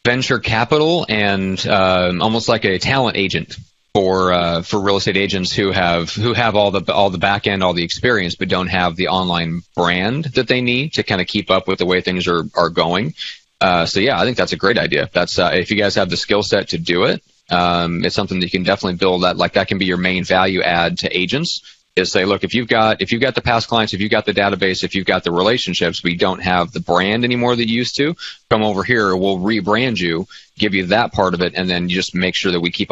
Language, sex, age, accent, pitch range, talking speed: English, male, 30-49, American, 90-110 Hz, 260 wpm